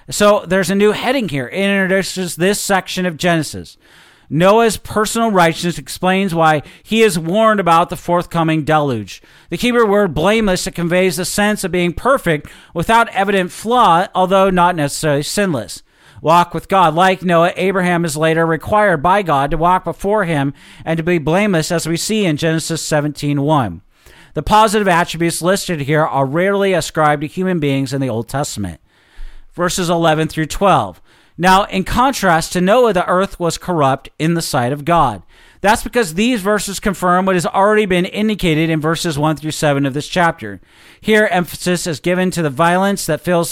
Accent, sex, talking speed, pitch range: American, male, 175 wpm, 160-200 Hz